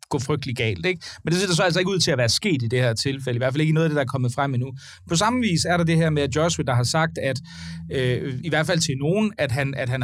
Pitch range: 140-175 Hz